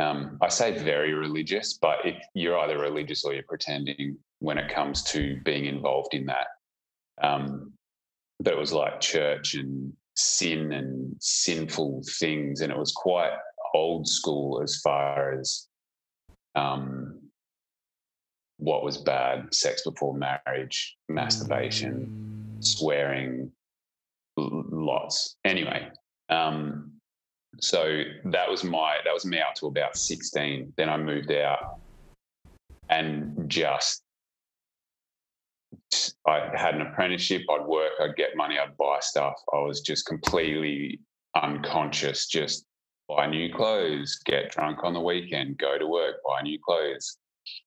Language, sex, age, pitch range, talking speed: English, male, 30-49, 70-80 Hz, 130 wpm